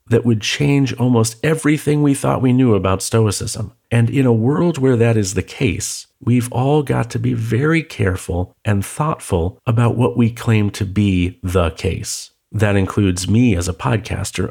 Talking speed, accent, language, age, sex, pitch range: 180 wpm, American, English, 40-59, male, 95-115 Hz